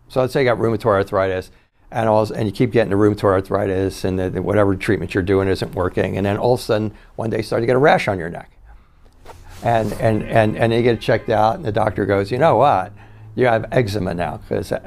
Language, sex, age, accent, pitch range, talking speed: English, male, 60-79, American, 100-125 Hz, 255 wpm